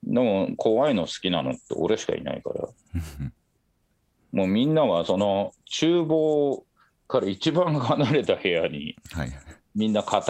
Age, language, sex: 40-59, Japanese, male